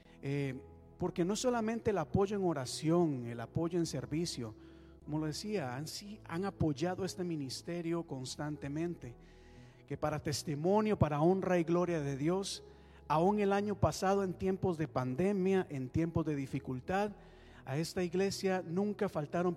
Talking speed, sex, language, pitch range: 145 wpm, male, Spanish, 130-195 Hz